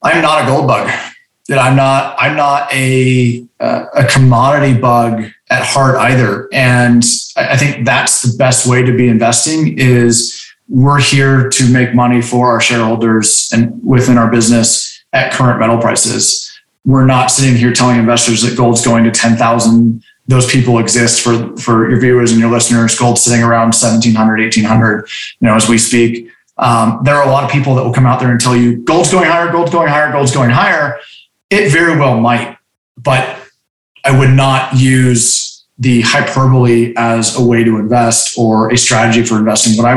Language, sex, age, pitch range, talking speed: English, male, 20-39, 115-130 Hz, 180 wpm